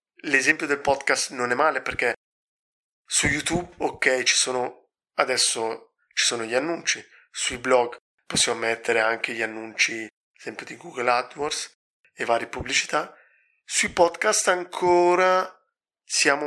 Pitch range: 120-150 Hz